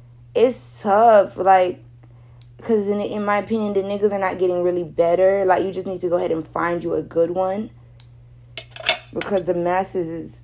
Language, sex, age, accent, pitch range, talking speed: English, female, 20-39, American, 120-190 Hz, 185 wpm